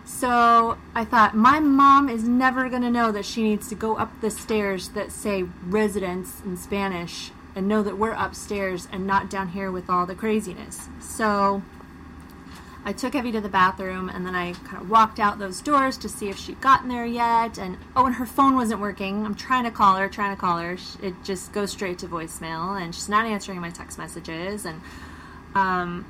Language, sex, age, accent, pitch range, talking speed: English, female, 30-49, American, 185-240 Hz, 205 wpm